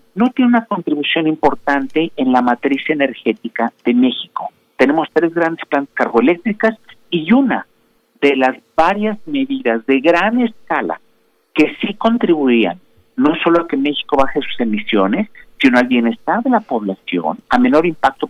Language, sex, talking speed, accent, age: Spanish, male, 150 wpm, Mexican, 50-69